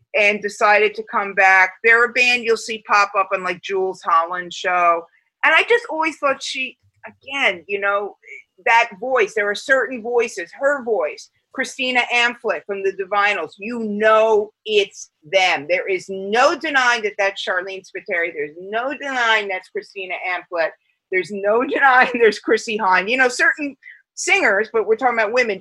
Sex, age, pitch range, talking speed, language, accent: female, 40-59, 190-260 Hz, 170 wpm, English, American